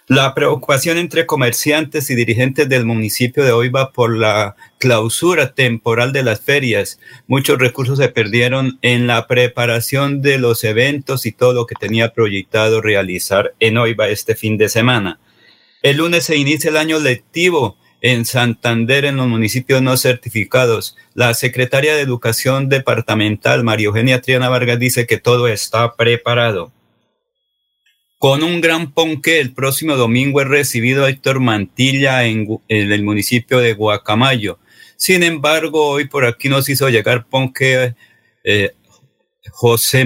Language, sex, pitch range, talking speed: Spanish, male, 115-140 Hz, 145 wpm